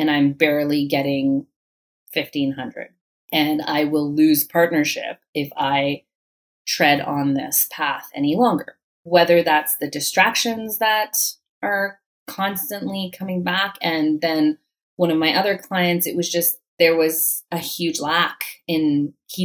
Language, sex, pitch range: English, female, 150-185 Hz